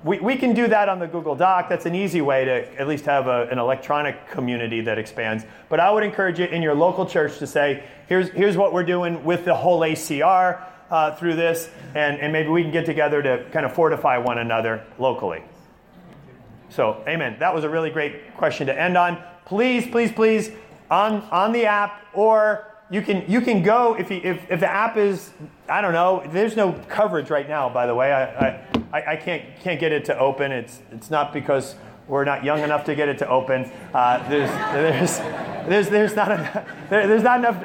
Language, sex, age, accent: English, male, 30-49, American